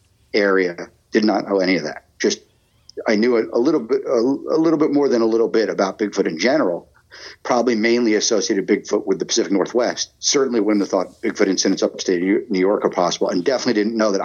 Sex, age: male, 50-69